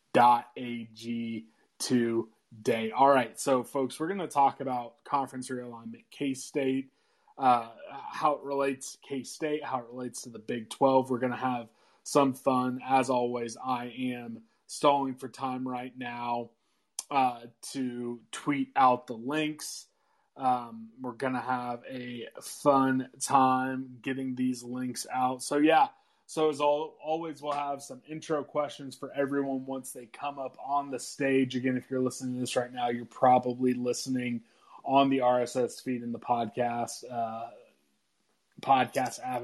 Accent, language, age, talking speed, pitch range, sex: American, English, 20-39, 150 wpm, 120-135 Hz, male